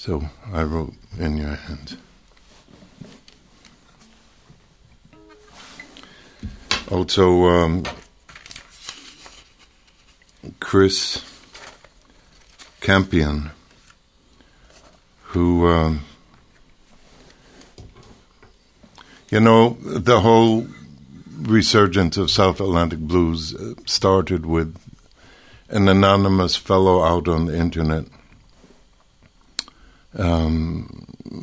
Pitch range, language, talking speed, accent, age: 80-95 Hz, English, 60 wpm, American, 60-79